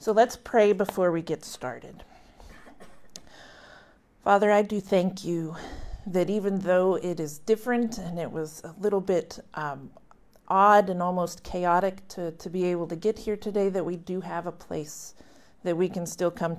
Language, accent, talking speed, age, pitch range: English, American, 175 wpm, 40-59, 165-195 Hz